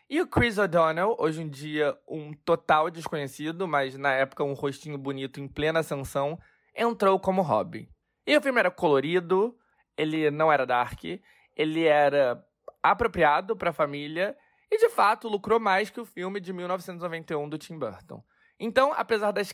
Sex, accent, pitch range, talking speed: male, Brazilian, 155-215 Hz, 165 wpm